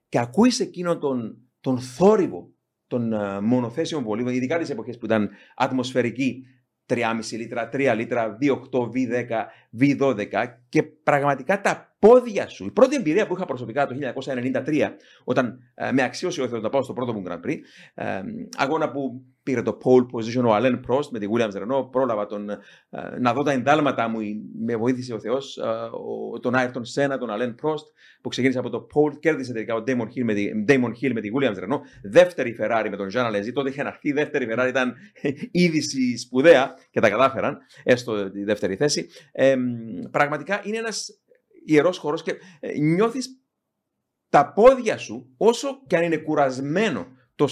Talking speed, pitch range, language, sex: 175 wpm, 120-170 Hz, Greek, male